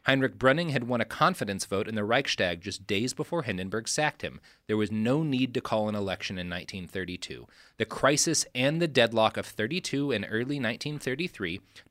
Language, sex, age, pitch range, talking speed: English, male, 30-49, 95-135 Hz, 180 wpm